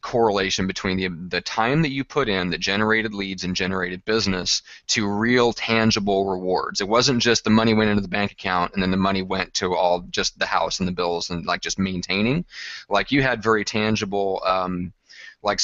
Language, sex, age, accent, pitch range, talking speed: English, male, 30-49, American, 95-110 Hz, 205 wpm